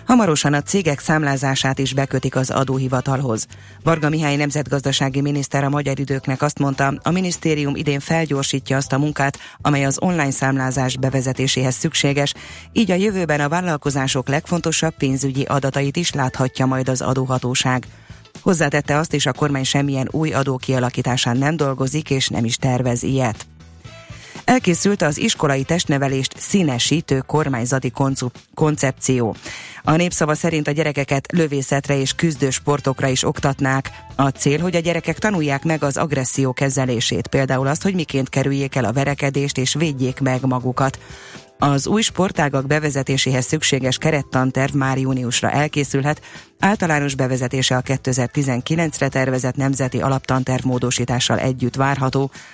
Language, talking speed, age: Hungarian, 135 wpm, 30-49